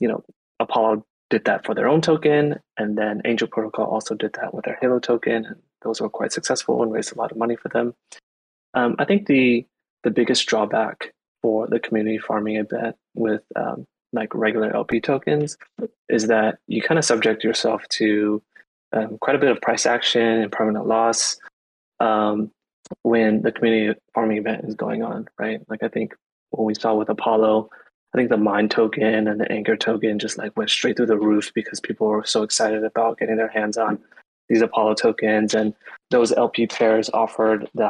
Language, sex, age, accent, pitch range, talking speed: English, male, 20-39, American, 110-115 Hz, 190 wpm